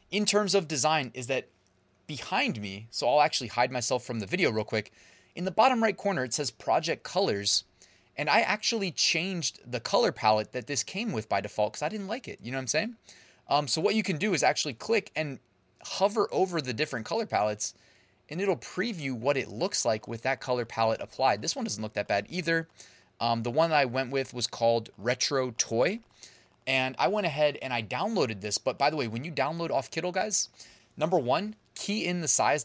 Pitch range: 115-170 Hz